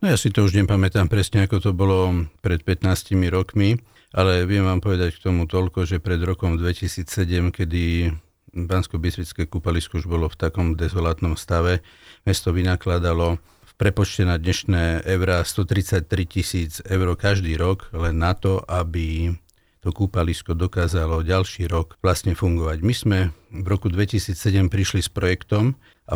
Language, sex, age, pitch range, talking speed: Slovak, male, 50-69, 90-105 Hz, 150 wpm